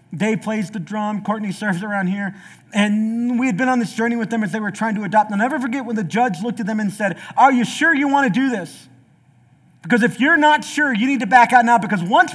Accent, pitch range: American, 160-230 Hz